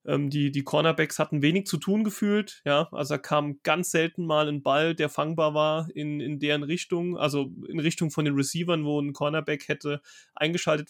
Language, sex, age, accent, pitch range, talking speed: German, male, 30-49, German, 140-160 Hz, 195 wpm